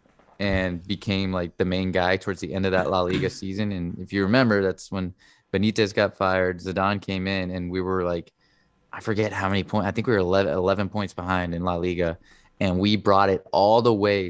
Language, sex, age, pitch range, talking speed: English, male, 20-39, 90-105 Hz, 225 wpm